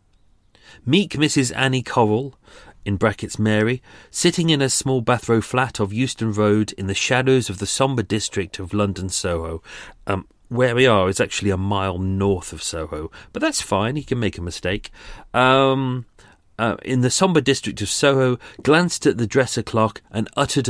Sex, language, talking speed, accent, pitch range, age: male, English, 175 wpm, British, 100-130 Hz, 40-59